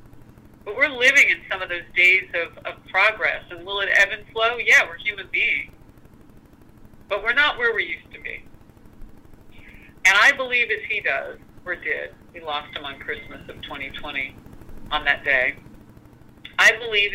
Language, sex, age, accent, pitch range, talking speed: English, female, 50-69, American, 160-235 Hz, 170 wpm